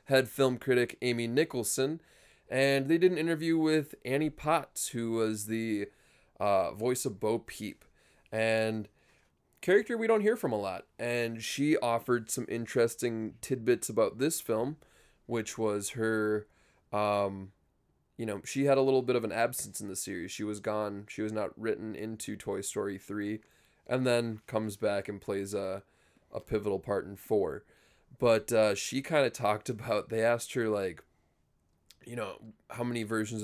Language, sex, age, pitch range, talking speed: English, male, 20-39, 100-120 Hz, 170 wpm